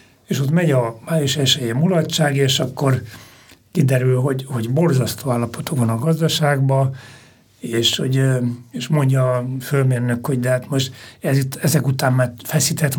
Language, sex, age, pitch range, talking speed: Hungarian, male, 60-79, 130-155 Hz, 150 wpm